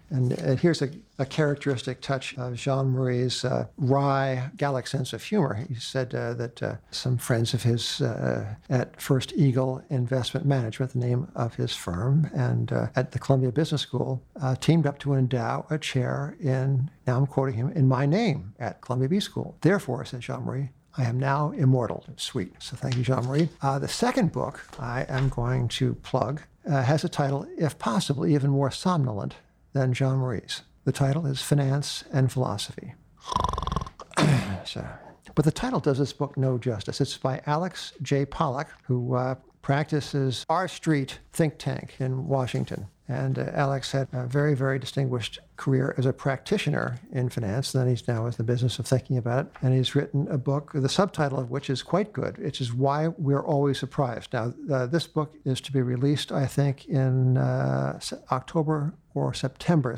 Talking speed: 175 wpm